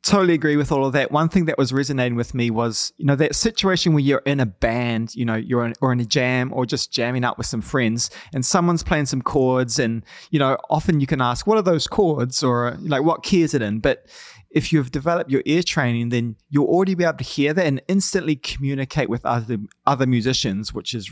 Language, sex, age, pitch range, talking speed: English, male, 20-39, 120-165 Hz, 240 wpm